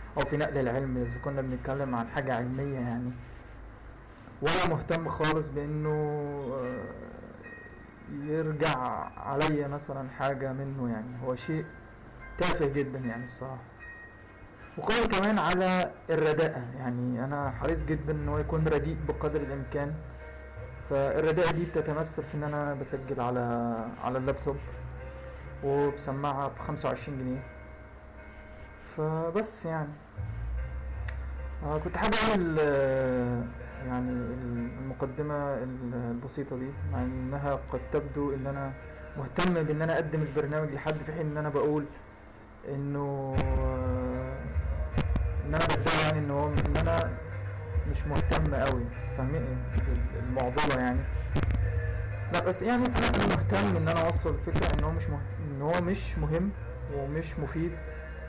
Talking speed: 120 wpm